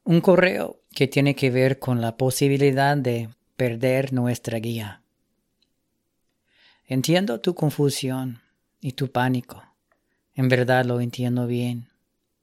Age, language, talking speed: 30-49, English, 115 wpm